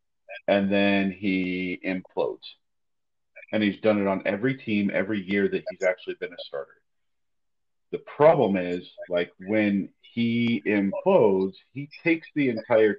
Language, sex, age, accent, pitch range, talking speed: English, male, 40-59, American, 95-130 Hz, 140 wpm